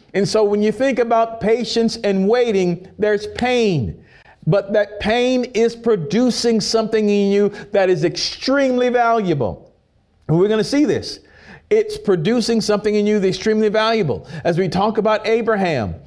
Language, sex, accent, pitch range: English, male, American, 180-225 Hz